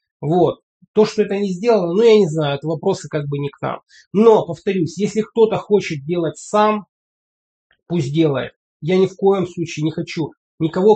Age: 30-49